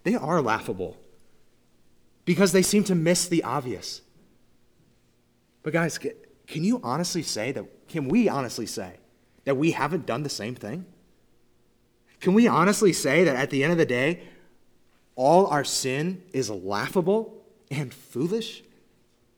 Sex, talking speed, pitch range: male, 140 wpm, 125-190 Hz